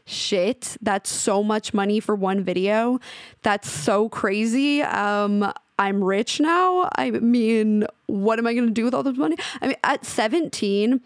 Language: English